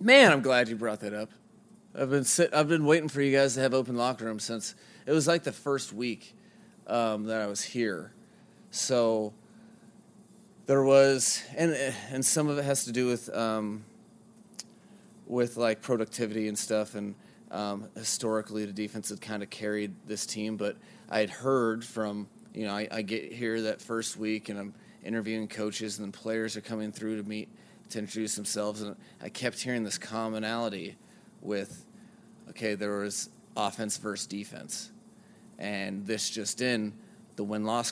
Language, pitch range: English, 105-150 Hz